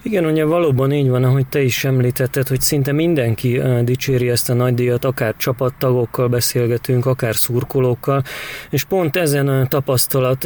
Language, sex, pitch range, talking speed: Hungarian, male, 120-140 Hz, 155 wpm